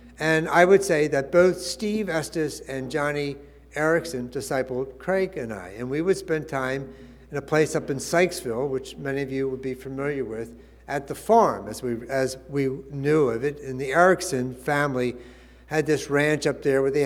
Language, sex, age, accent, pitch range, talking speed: English, male, 60-79, American, 130-165 Hz, 195 wpm